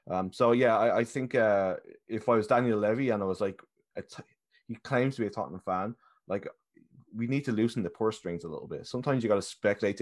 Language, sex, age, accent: English, male, 20-39, Irish